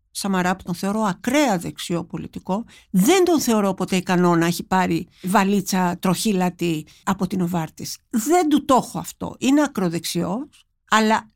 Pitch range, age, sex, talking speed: 180-235 Hz, 50-69, female, 150 wpm